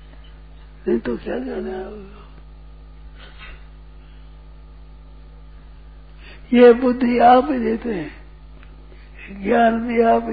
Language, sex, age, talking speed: Hindi, male, 60-79, 80 wpm